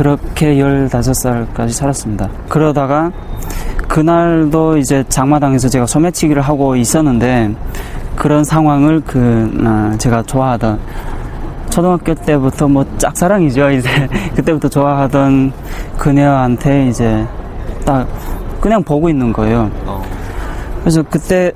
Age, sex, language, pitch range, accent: 20-39, male, Korean, 115-155 Hz, native